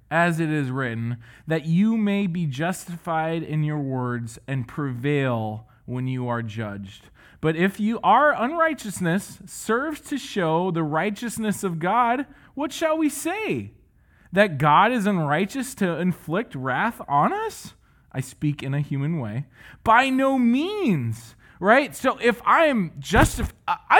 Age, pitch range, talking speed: 20-39, 145-245 Hz, 145 wpm